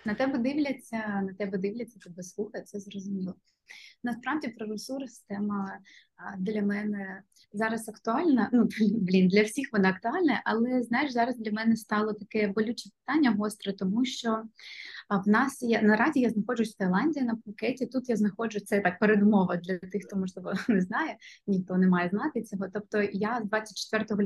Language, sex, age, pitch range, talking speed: Ukrainian, female, 20-39, 195-225 Hz, 165 wpm